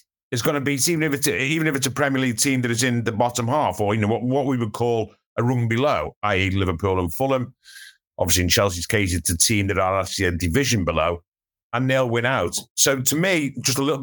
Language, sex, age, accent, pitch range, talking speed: English, male, 50-69, British, 110-150 Hz, 235 wpm